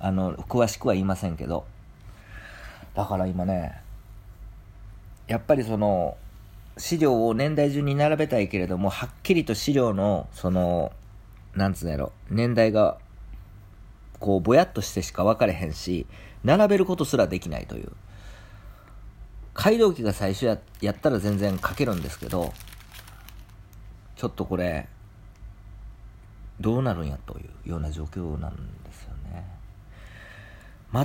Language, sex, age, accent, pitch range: Japanese, male, 50-69, native, 95-110 Hz